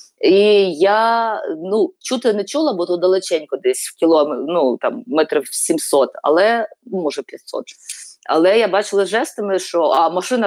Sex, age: female, 30-49